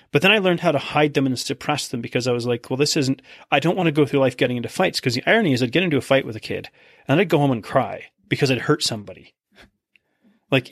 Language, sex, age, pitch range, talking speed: English, male, 30-49, 125-150 Hz, 285 wpm